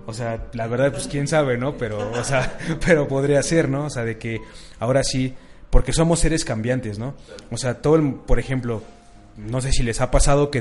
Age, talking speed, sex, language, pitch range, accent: 20-39, 220 wpm, male, Spanish, 115-140 Hz, Mexican